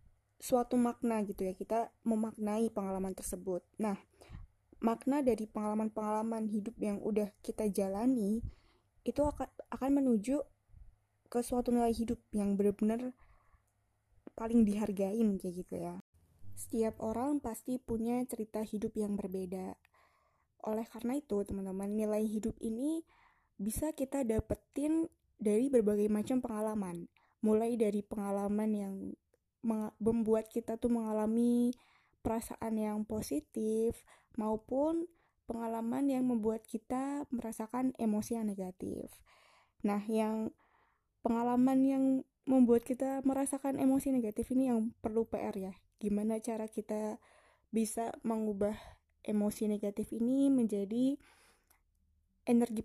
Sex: female